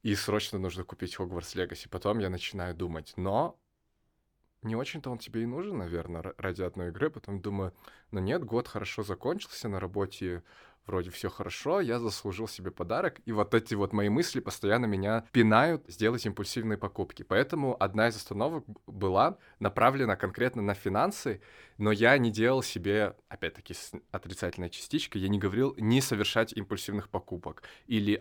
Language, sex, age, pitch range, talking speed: Russian, male, 20-39, 95-115 Hz, 155 wpm